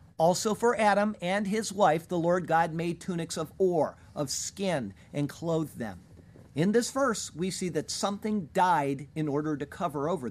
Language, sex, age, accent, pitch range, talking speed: English, male, 50-69, American, 125-170 Hz, 180 wpm